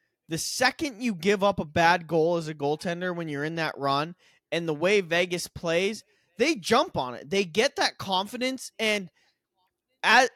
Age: 20-39